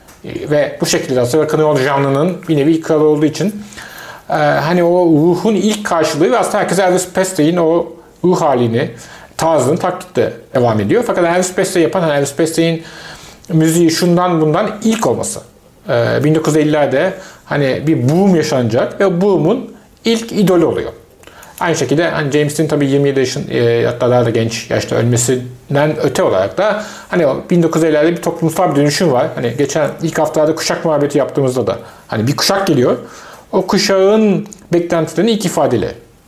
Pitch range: 145-180 Hz